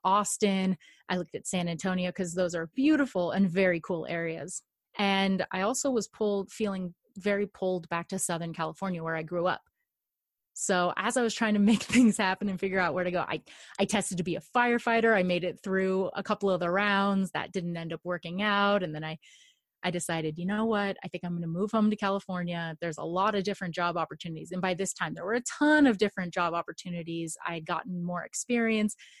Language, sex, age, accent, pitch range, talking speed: English, female, 30-49, American, 170-205 Hz, 220 wpm